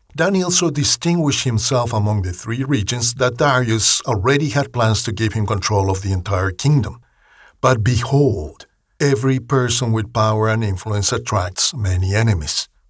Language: English